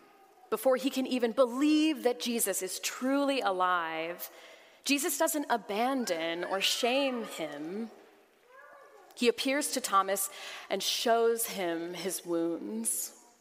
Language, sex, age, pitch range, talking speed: English, female, 30-49, 185-275 Hz, 110 wpm